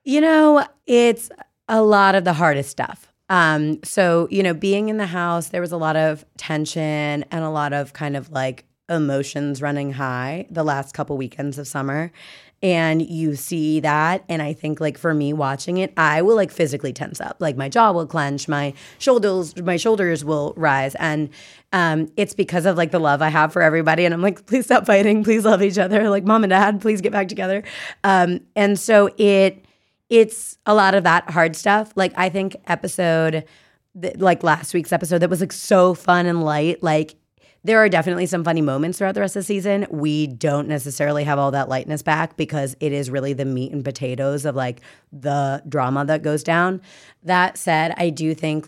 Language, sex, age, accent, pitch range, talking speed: English, female, 30-49, American, 145-185 Hz, 205 wpm